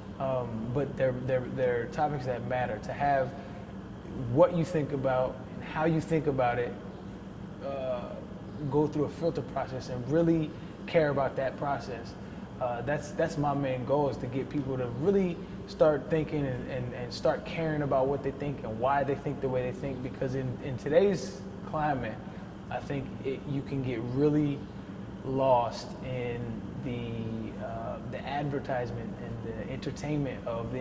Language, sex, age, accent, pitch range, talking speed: English, male, 20-39, American, 125-150 Hz, 160 wpm